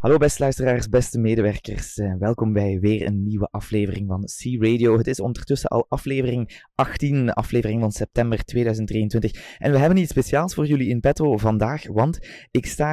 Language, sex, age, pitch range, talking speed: Dutch, male, 20-39, 100-125 Hz, 170 wpm